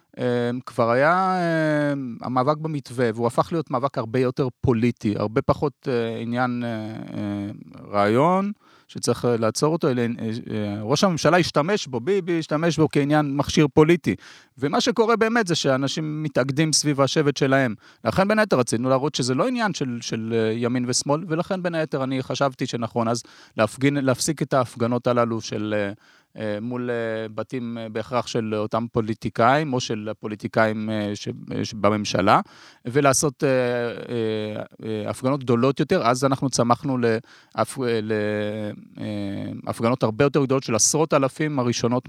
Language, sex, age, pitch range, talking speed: Hebrew, male, 30-49, 115-150 Hz, 125 wpm